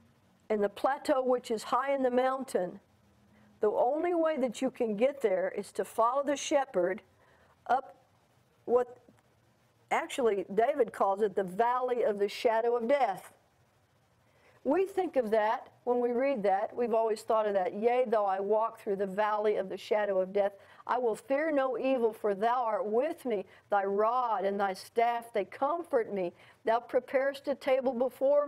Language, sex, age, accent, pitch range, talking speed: English, female, 50-69, American, 205-260 Hz, 175 wpm